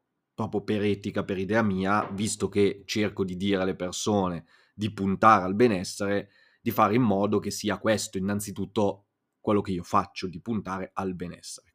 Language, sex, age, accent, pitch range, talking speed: Italian, male, 30-49, native, 100-115 Hz, 170 wpm